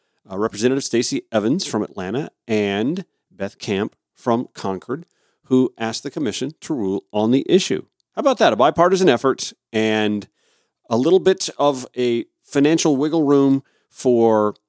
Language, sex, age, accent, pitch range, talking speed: English, male, 40-59, American, 105-145 Hz, 145 wpm